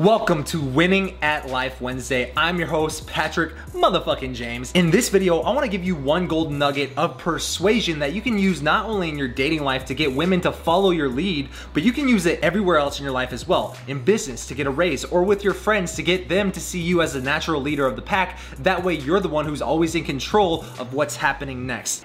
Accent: American